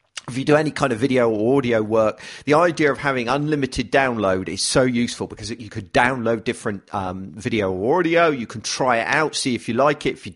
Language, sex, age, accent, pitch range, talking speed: English, male, 40-59, British, 110-150 Hz, 230 wpm